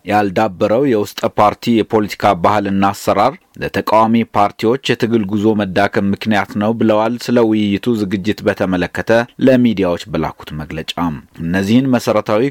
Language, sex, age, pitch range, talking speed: Amharic, male, 30-49, 100-115 Hz, 100 wpm